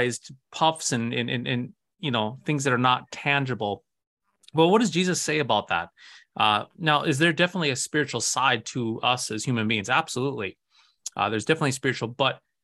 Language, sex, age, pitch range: English, male, 30-49, 120-150 Hz